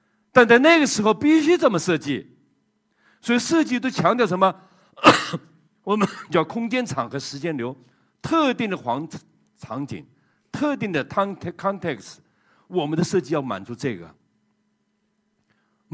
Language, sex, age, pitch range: Chinese, male, 50-69, 165-225 Hz